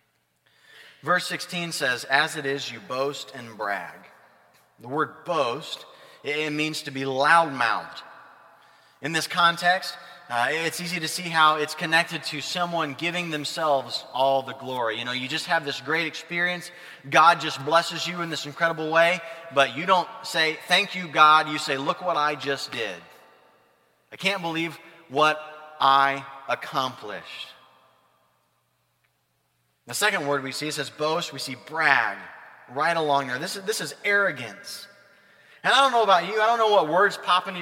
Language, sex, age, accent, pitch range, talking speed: English, male, 30-49, American, 135-175 Hz, 165 wpm